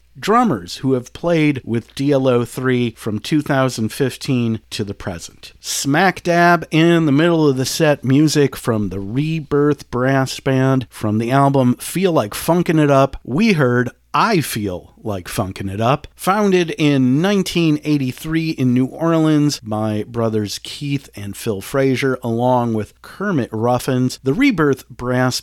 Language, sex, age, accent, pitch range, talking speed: English, male, 40-59, American, 120-155 Hz, 140 wpm